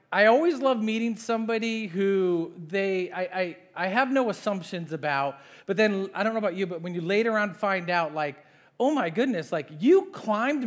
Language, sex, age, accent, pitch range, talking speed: English, male, 40-59, American, 155-230 Hz, 195 wpm